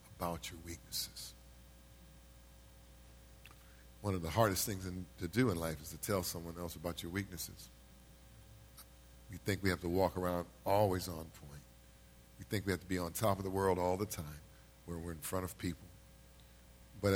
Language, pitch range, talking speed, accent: English, 70-105 Hz, 180 wpm, American